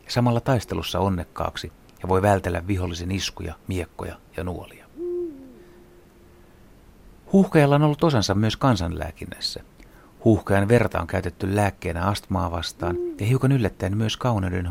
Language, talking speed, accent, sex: Finnish, 120 wpm, native, male